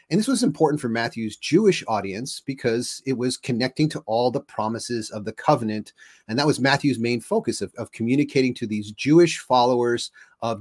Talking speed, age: 185 wpm, 40-59